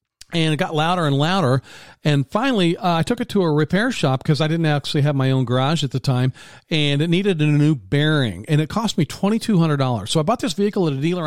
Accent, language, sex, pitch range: American, English, male, 135-180 Hz